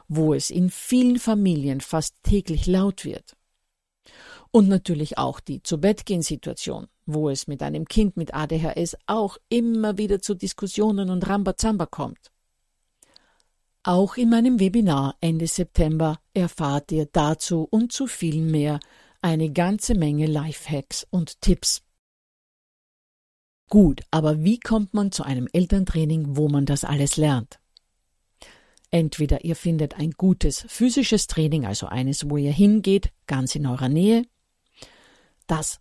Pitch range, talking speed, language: 150-195 Hz, 135 wpm, German